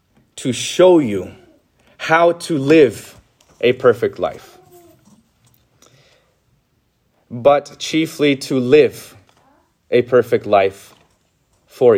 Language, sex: English, male